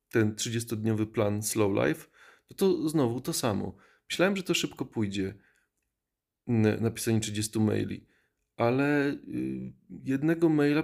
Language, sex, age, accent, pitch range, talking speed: Polish, male, 30-49, native, 105-135 Hz, 115 wpm